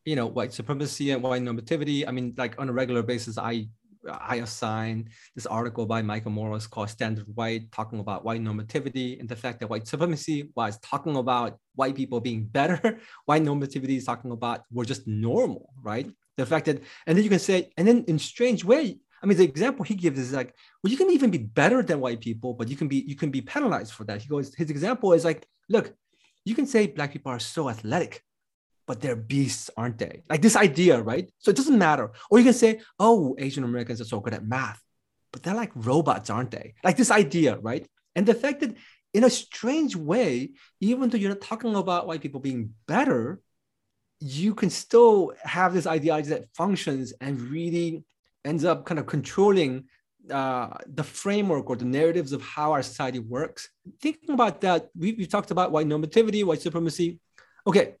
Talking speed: 205 wpm